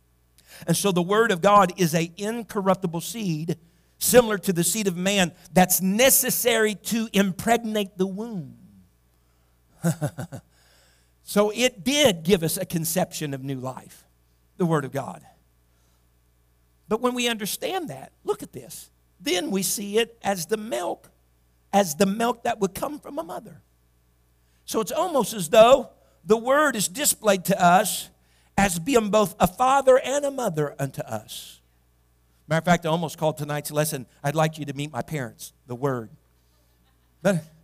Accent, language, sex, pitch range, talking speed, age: American, English, male, 130-210 Hz, 160 wpm, 50-69